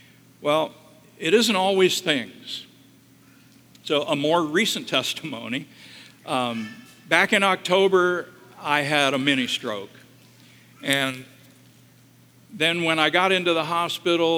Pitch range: 130-170 Hz